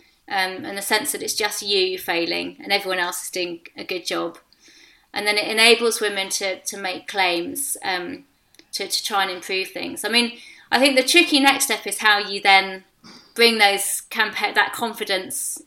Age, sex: 30-49, female